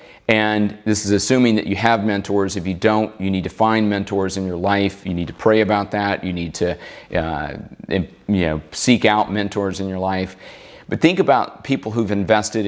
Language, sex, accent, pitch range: English, male, American, 95-110 Hz